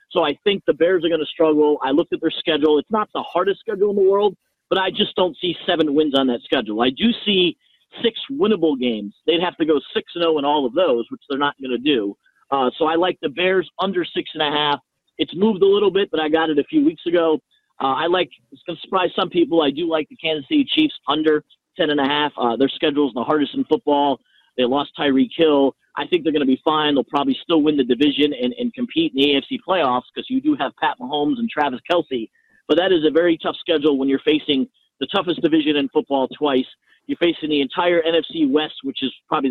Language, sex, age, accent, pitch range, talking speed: English, male, 30-49, American, 145-180 Hz, 250 wpm